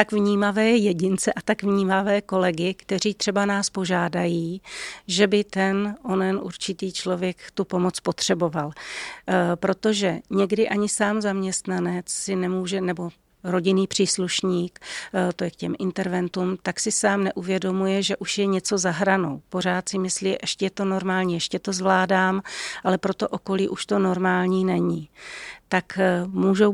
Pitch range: 180-195 Hz